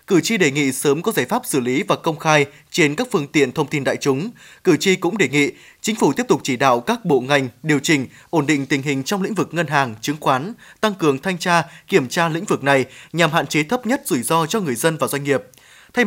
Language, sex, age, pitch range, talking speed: Vietnamese, male, 20-39, 145-205 Hz, 265 wpm